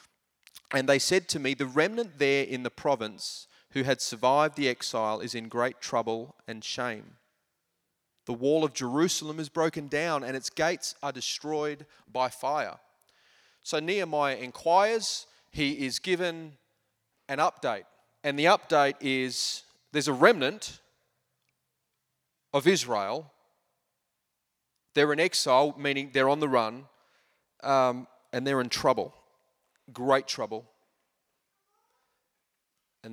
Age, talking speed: 30-49, 125 wpm